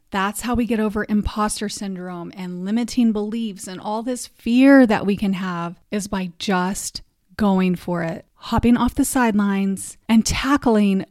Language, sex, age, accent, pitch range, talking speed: English, female, 30-49, American, 195-240 Hz, 160 wpm